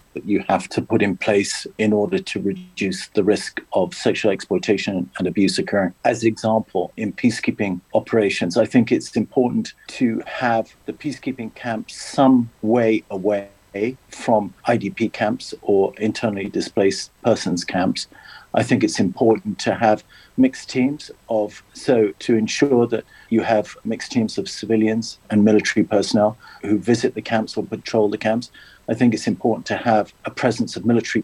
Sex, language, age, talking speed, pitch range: male, English, 50-69, 165 wpm, 105-115 Hz